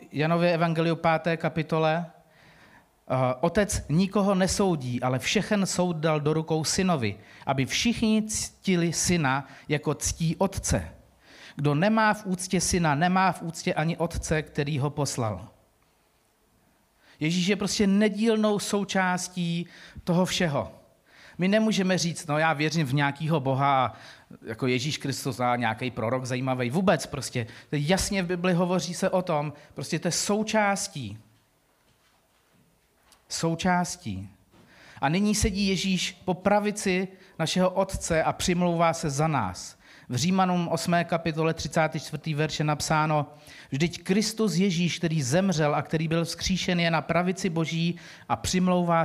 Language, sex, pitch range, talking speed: Czech, male, 150-185 Hz, 130 wpm